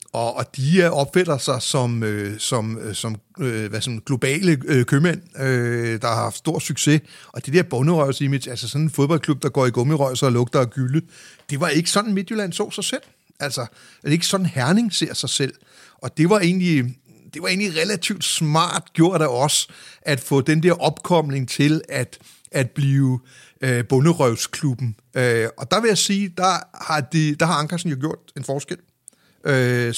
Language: Danish